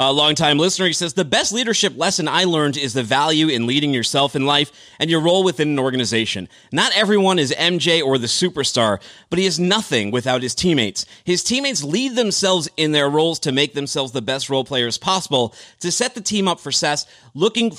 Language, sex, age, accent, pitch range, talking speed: English, male, 30-49, American, 145-210 Hz, 210 wpm